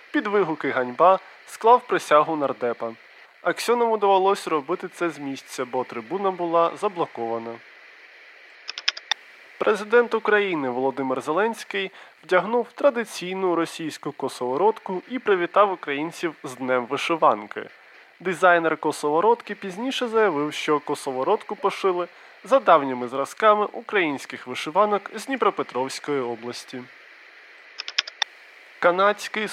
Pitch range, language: 140-205 Hz, Ukrainian